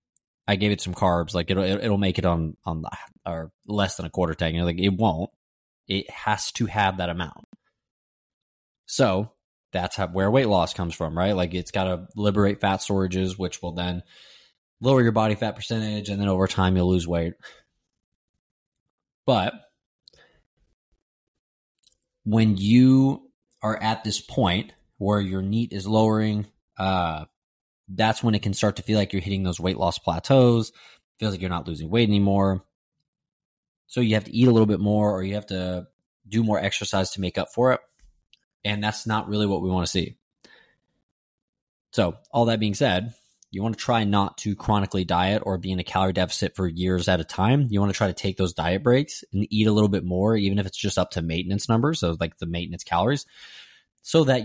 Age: 20-39